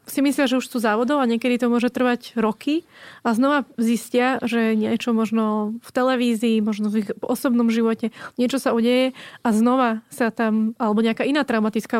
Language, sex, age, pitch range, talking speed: Slovak, female, 20-39, 215-240 Hz, 175 wpm